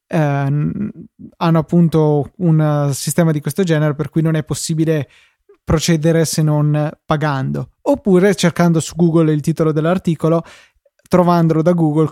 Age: 20-39